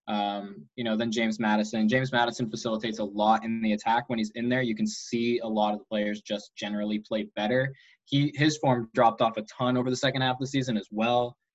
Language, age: English, 20-39